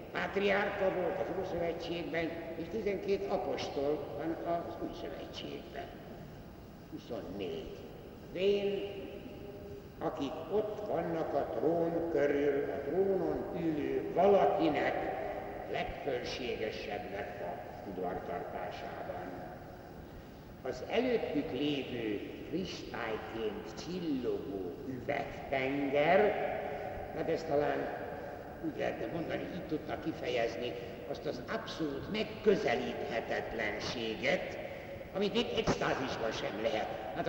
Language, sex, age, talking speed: Hungarian, male, 60-79, 80 wpm